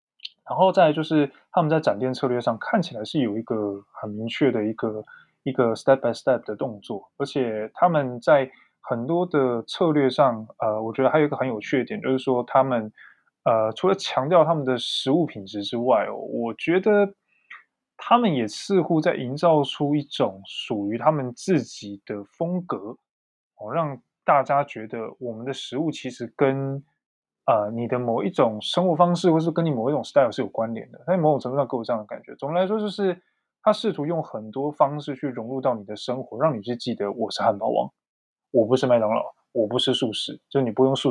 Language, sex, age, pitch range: Chinese, male, 20-39, 115-150 Hz